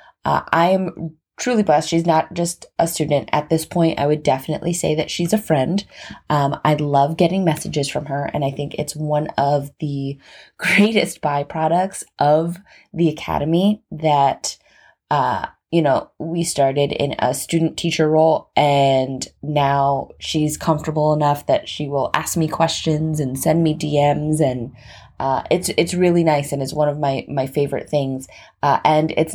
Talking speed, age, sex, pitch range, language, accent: 170 wpm, 20-39, female, 145-170 Hz, English, American